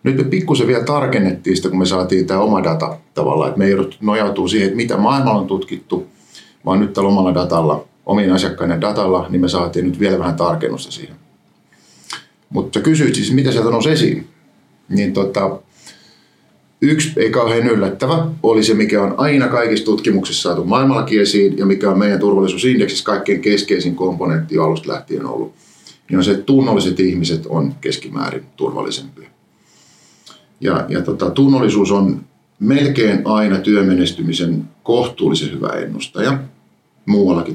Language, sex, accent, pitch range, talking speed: Finnish, male, native, 90-120 Hz, 145 wpm